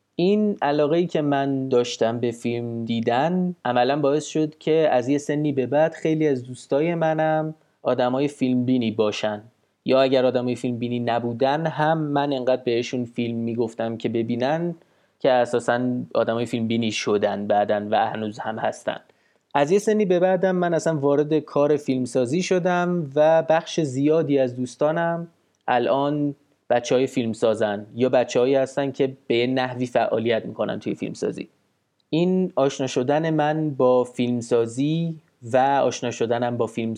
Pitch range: 120-160 Hz